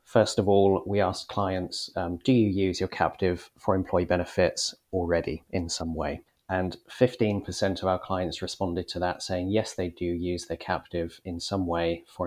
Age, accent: 30-49, British